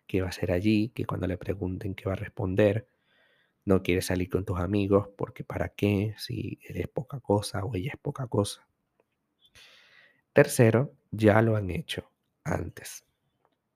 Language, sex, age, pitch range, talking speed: Spanish, male, 50-69, 95-130 Hz, 160 wpm